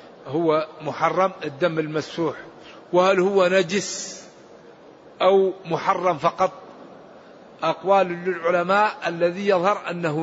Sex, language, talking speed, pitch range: male, Arabic, 90 wpm, 180-210 Hz